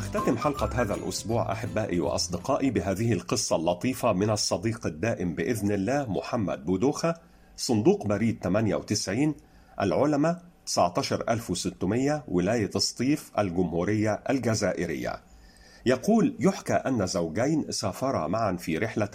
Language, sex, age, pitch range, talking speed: Arabic, male, 50-69, 95-125 Hz, 105 wpm